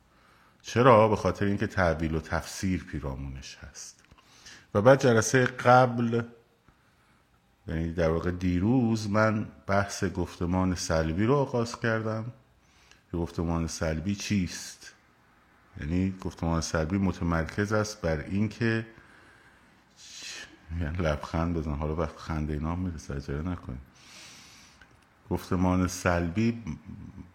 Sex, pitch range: male, 85-115 Hz